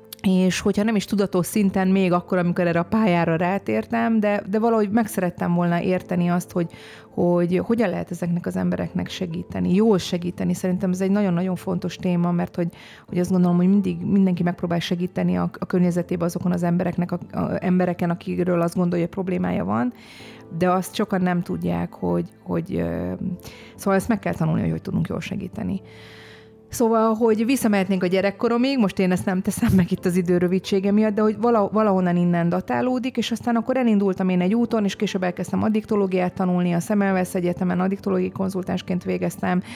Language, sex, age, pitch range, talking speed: Hungarian, female, 30-49, 175-205 Hz, 175 wpm